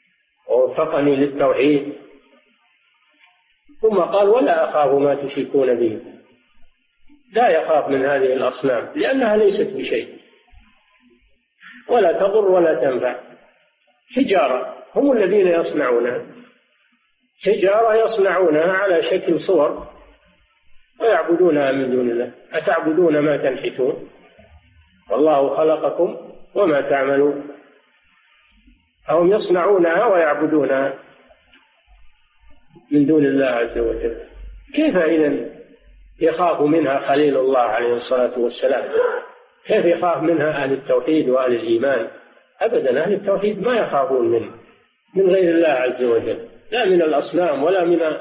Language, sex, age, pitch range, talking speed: Arabic, male, 50-69, 135-220 Hz, 100 wpm